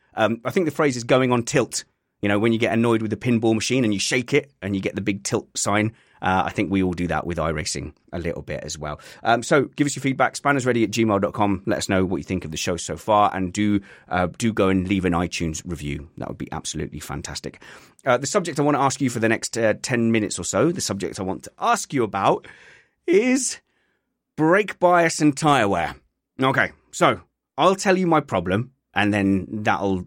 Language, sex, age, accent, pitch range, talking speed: English, male, 30-49, British, 95-130 Hz, 235 wpm